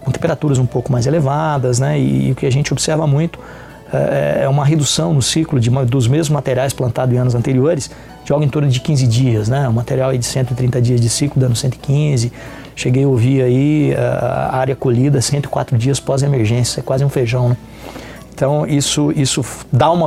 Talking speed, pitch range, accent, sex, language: 205 wpm, 130-150 Hz, Brazilian, male, Portuguese